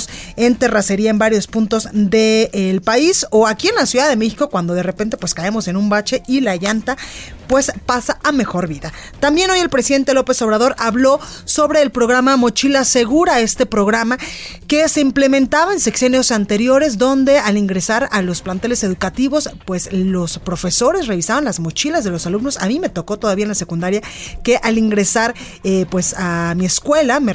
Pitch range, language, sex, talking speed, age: 195-260 Hz, Spanish, female, 180 wpm, 30-49